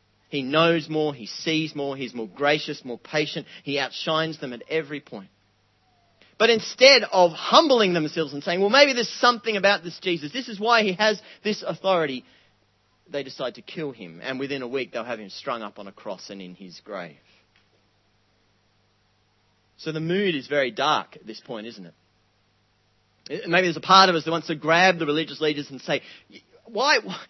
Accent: Australian